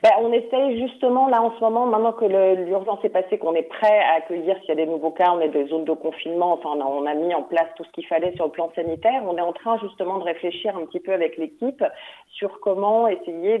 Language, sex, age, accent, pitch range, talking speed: French, female, 40-59, French, 155-185 Hz, 275 wpm